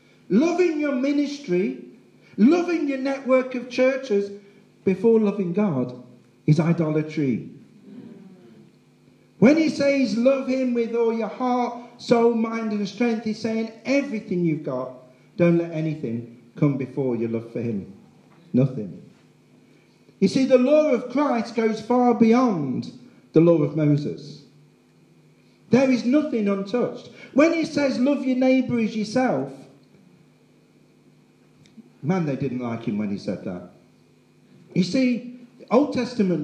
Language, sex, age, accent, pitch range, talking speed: English, male, 50-69, British, 170-250 Hz, 130 wpm